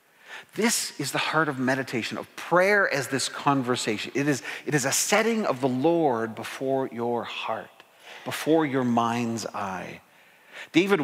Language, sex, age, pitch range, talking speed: English, male, 40-59, 130-165 Hz, 145 wpm